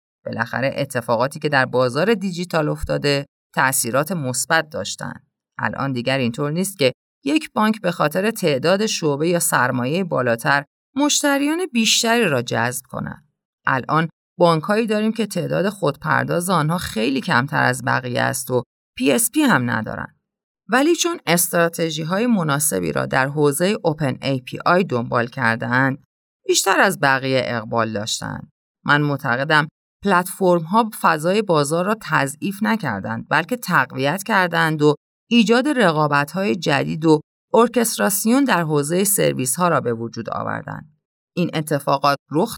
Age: 30-49